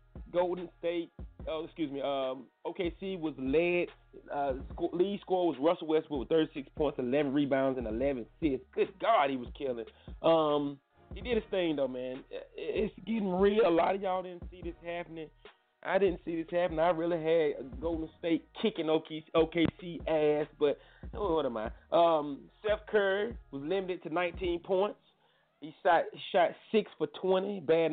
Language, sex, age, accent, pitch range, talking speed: English, male, 30-49, American, 145-190 Hz, 180 wpm